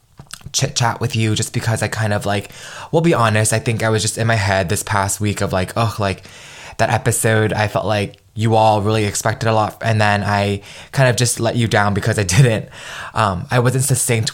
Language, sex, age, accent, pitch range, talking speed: English, male, 20-39, American, 100-115 Hz, 230 wpm